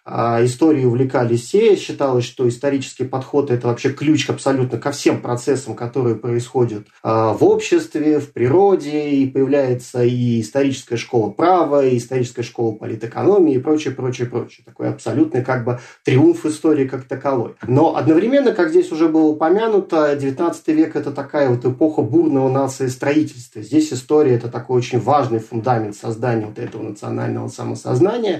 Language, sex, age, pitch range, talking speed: Russian, male, 30-49, 120-155 Hz, 155 wpm